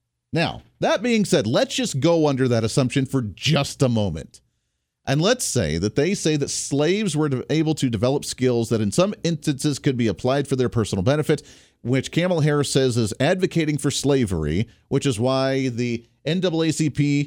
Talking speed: 175 wpm